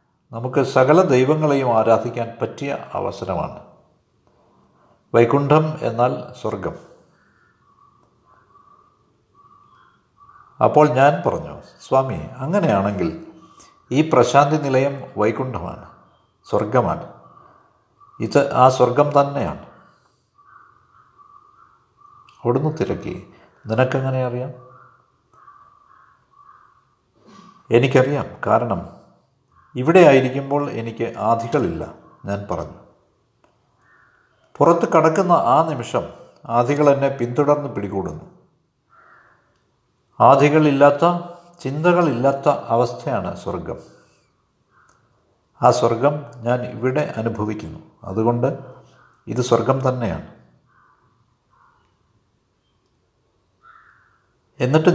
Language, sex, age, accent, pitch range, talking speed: Malayalam, male, 50-69, native, 115-160 Hz, 60 wpm